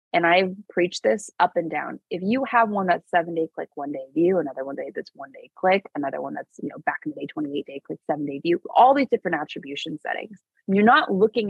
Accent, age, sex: American, 20-39, female